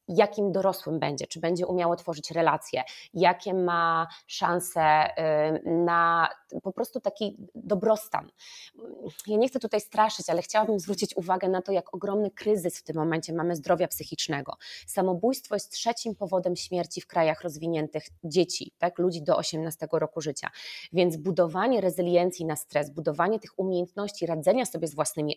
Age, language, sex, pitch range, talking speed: 20-39, Polish, female, 170-215 Hz, 150 wpm